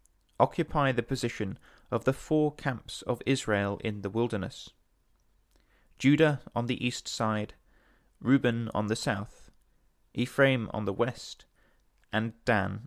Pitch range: 105-135 Hz